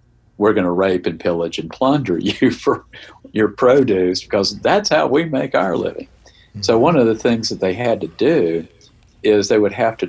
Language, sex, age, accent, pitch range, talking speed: English, male, 50-69, American, 90-110 Hz, 200 wpm